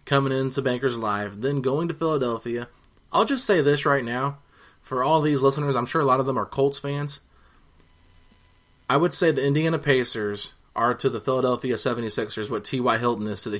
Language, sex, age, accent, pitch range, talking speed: English, male, 30-49, American, 120-145 Hz, 195 wpm